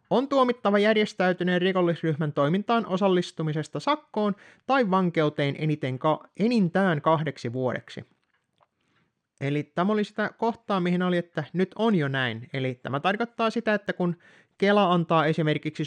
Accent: native